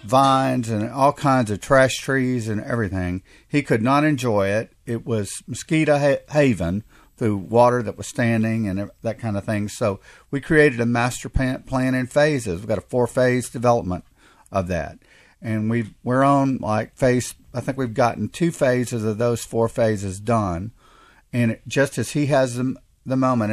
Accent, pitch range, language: American, 105-130 Hz, English